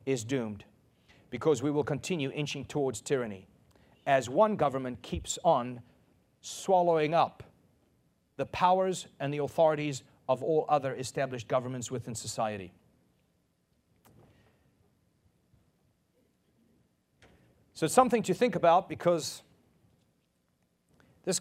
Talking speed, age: 100 wpm, 40-59